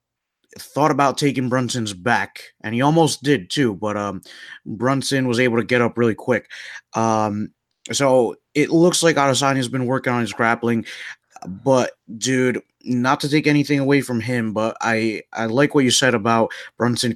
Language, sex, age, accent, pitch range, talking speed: English, male, 30-49, American, 110-135 Hz, 175 wpm